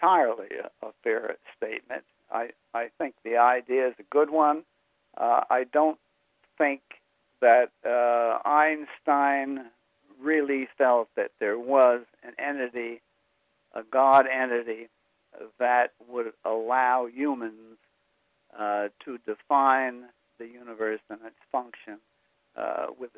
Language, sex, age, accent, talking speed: English, male, 60-79, American, 115 wpm